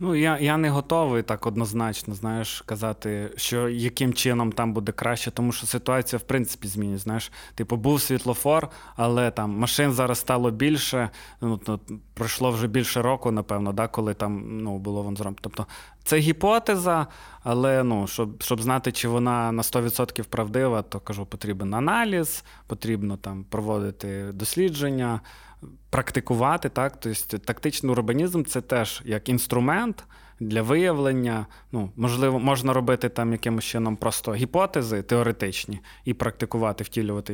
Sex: male